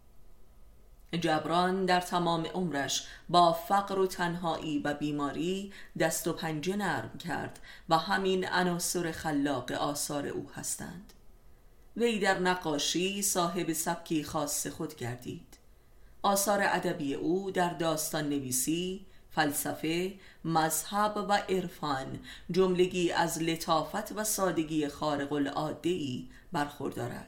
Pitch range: 155-185 Hz